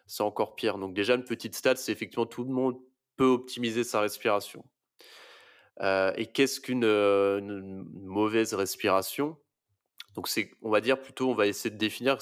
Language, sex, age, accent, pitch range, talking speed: French, male, 20-39, French, 100-120 Hz, 175 wpm